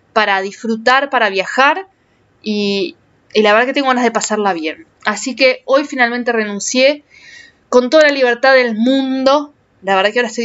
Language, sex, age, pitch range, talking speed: Spanish, female, 20-39, 215-280 Hz, 170 wpm